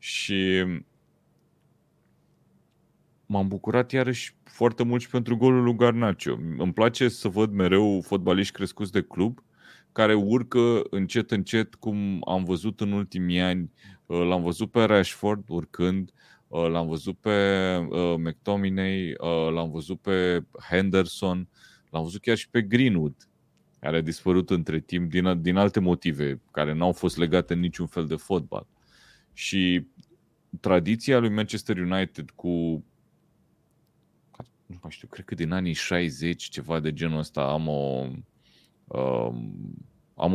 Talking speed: 130 wpm